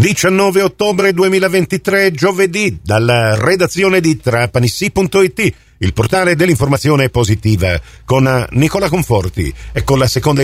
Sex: male